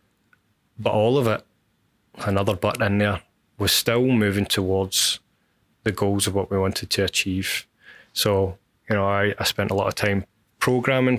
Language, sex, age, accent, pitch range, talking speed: English, male, 20-39, British, 100-110 Hz, 165 wpm